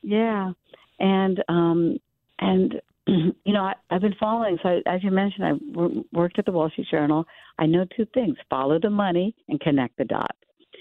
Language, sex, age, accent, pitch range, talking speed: English, female, 60-79, American, 150-220 Hz, 190 wpm